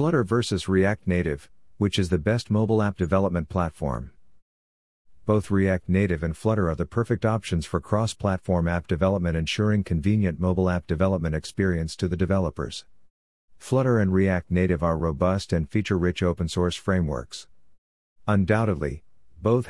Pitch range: 85-105 Hz